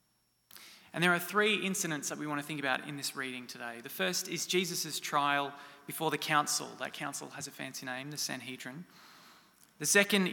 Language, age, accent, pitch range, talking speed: English, 20-39, Australian, 140-170 Hz, 190 wpm